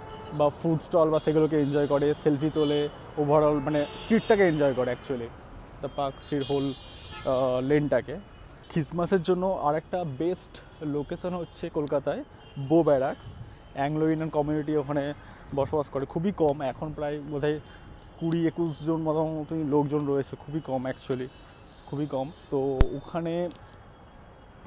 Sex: male